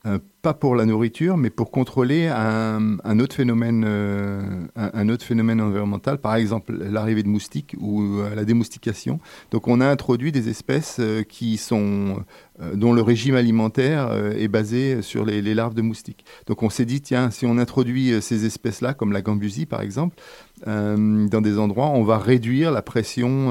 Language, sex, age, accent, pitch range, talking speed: French, male, 40-59, French, 105-125 Hz, 175 wpm